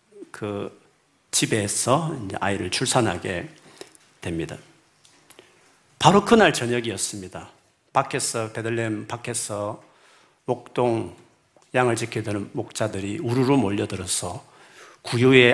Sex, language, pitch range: male, Korean, 105-135 Hz